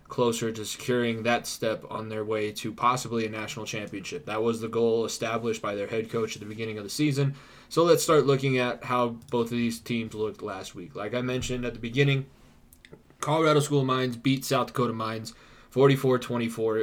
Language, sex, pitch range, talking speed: English, male, 110-130 Hz, 200 wpm